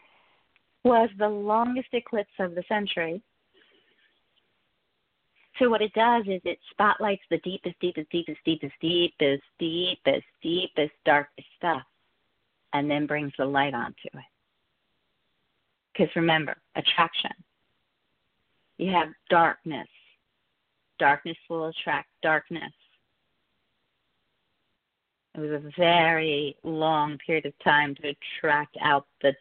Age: 40-59